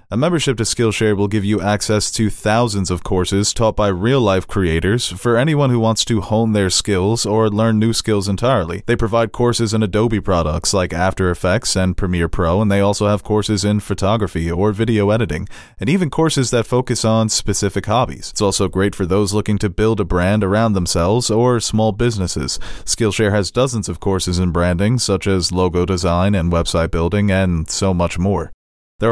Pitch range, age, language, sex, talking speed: 95-115 Hz, 30-49, English, male, 190 wpm